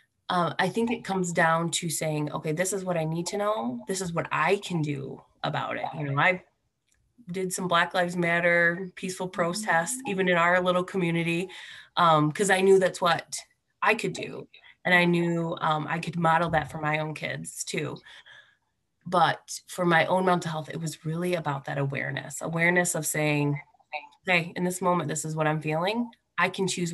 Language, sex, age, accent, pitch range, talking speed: English, female, 20-39, American, 150-185 Hz, 195 wpm